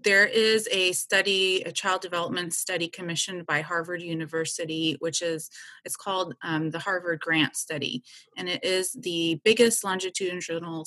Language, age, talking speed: English, 30-49, 150 wpm